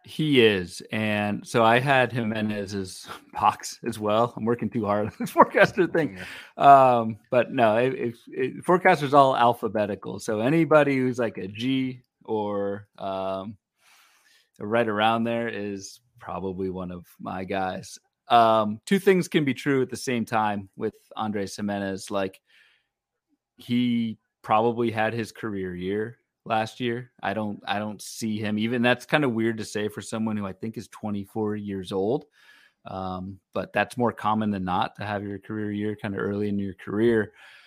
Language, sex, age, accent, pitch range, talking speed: English, male, 30-49, American, 100-120 Hz, 170 wpm